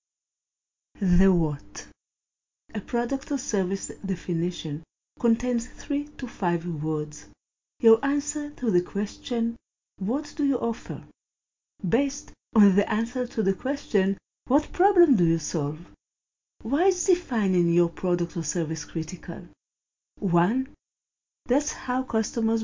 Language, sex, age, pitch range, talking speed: English, female, 50-69, 170-245 Hz, 120 wpm